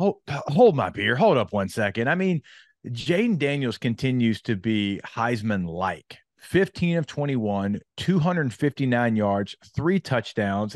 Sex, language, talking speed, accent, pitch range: male, English, 130 wpm, American, 105-140 Hz